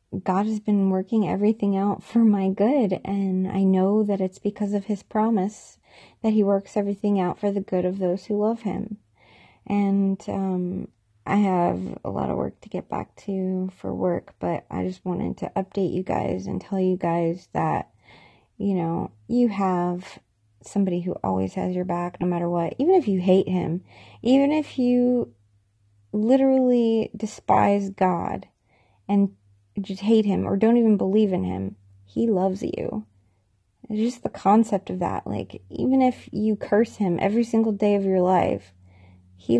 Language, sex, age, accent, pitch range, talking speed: English, female, 20-39, American, 180-210 Hz, 175 wpm